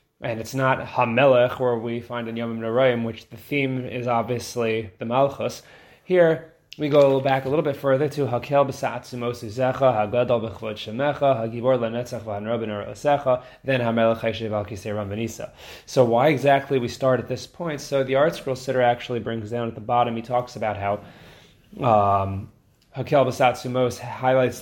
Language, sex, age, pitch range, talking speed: English, male, 20-39, 115-145 Hz, 160 wpm